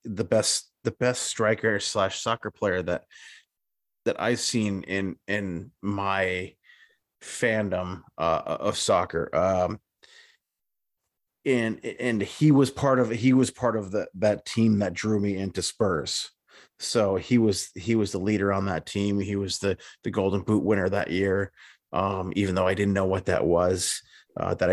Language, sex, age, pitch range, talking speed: English, male, 30-49, 95-110 Hz, 165 wpm